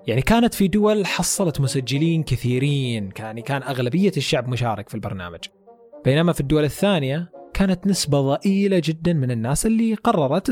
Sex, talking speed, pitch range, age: male, 145 wpm, 135-190 Hz, 30-49